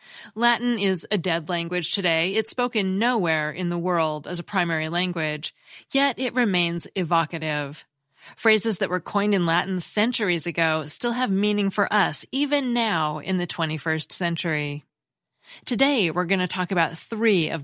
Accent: American